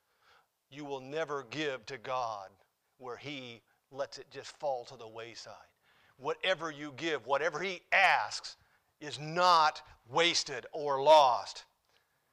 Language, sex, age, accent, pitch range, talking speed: English, male, 50-69, American, 140-175 Hz, 125 wpm